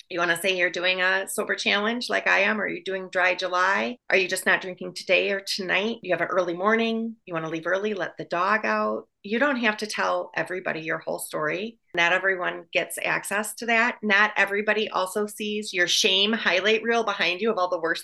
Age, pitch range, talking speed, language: 30-49, 180-225 Hz, 225 wpm, English